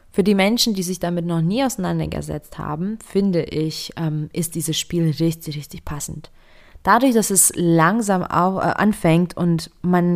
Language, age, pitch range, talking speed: German, 20-39, 165-195 Hz, 155 wpm